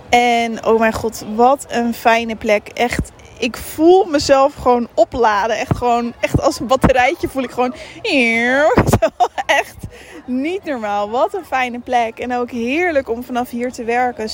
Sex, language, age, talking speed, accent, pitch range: female, Dutch, 20-39, 160 wpm, Dutch, 230-270 Hz